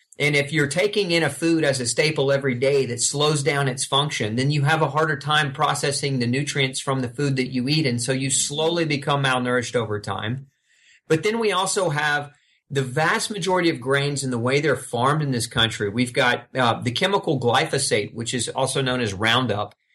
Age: 40-59